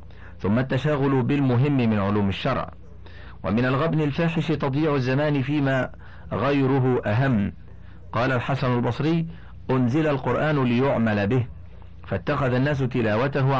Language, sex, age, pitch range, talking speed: Arabic, male, 50-69, 100-140 Hz, 105 wpm